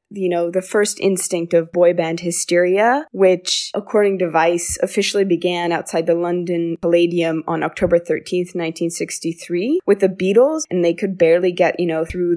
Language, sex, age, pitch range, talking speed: English, female, 20-39, 170-200 Hz, 165 wpm